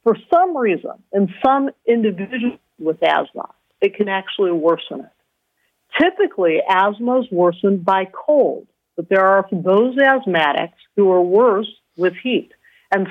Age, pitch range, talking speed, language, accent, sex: 50-69, 185-265 Hz, 135 wpm, English, American, female